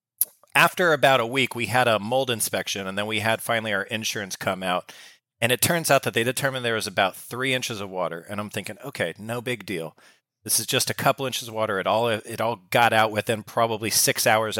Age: 40-59